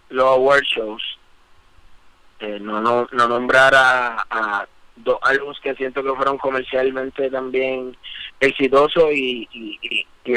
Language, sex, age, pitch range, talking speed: Spanish, male, 30-49, 115-140 Hz, 135 wpm